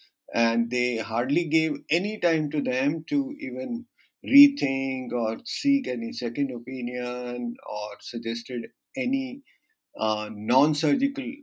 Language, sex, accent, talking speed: English, male, Indian, 110 wpm